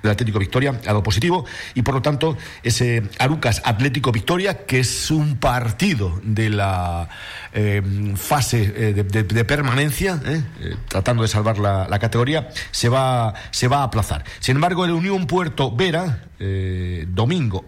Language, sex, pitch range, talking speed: Spanish, male, 110-150 Hz, 165 wpm